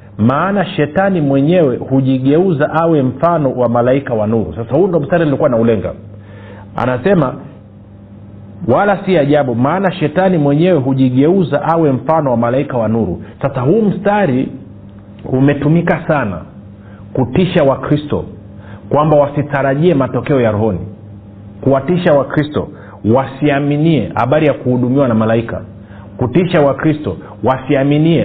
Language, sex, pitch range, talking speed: Swahili, male, 110-150 Hz, 115 wpm